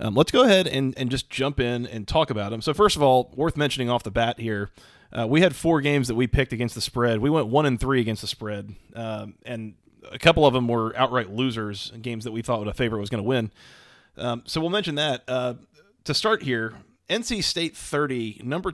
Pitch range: 115-145 Hz